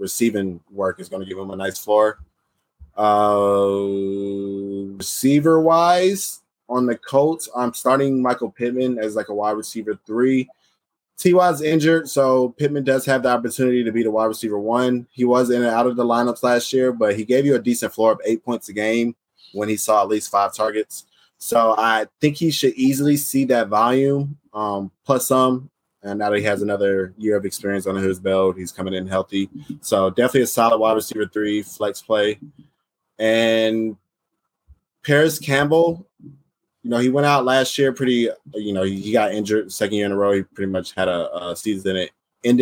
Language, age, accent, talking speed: English, 20-39, American, 190 wpm